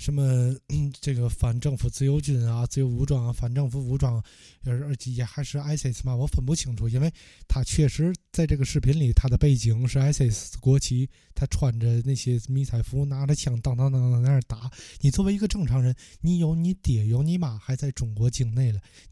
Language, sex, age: Chinese, male, 20-39